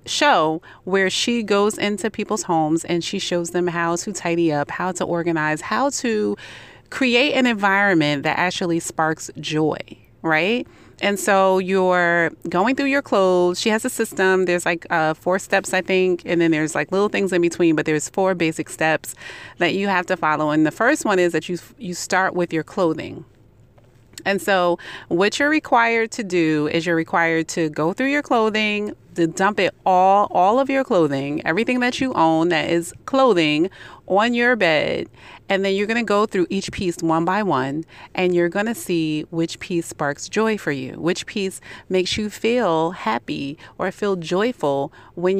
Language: English